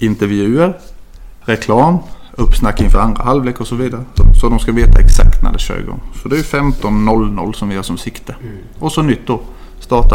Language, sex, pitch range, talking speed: English, male, 100-120 Hz, 190 wpm